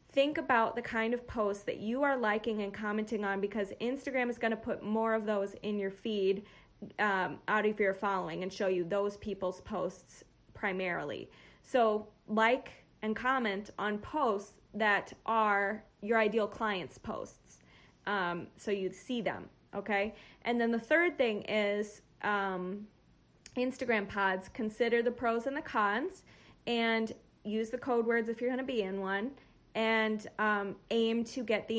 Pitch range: 200-230 Hz